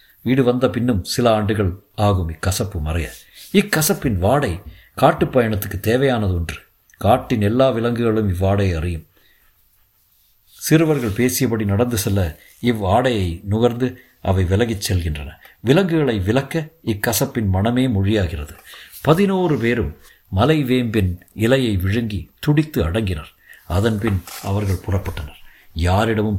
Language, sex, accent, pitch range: Tamil, male, native, 95-125 Hz